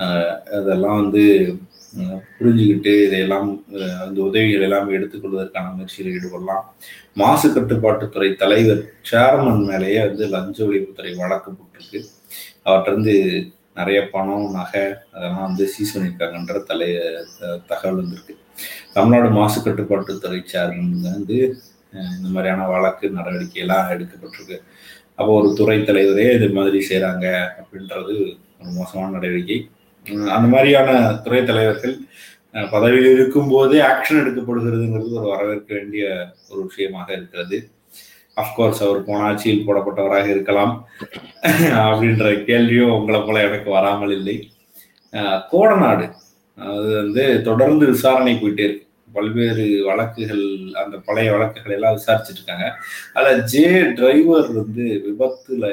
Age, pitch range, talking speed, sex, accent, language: 30-49, 95-115 Hz, 105 wpm, male, native, Tamil